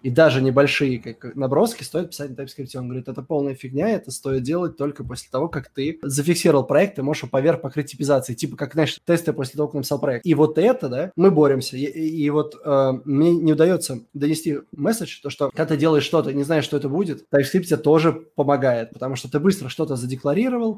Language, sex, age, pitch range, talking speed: Russian, male, 20-39, 135-160 Hz, 215 wpm